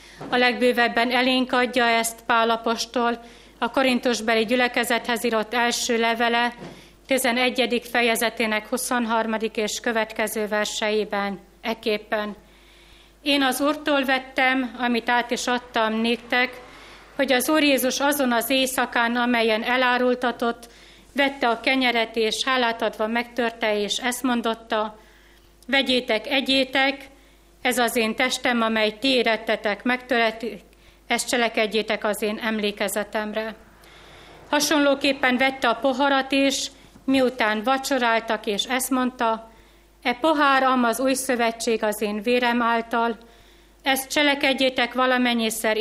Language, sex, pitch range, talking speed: Hungarian, female, 220-255 Hz, 110 wpm